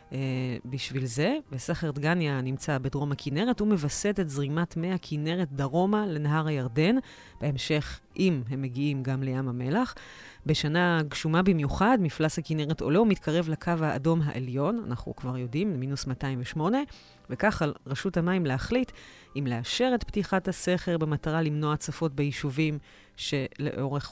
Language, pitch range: Hebrew, 135-170 Hz